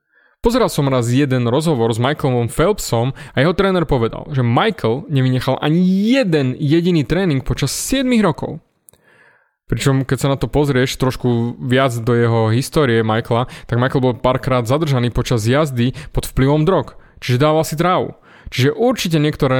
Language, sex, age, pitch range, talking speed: Slovak, male, 20-39, 125-160 Hz, 155 wpm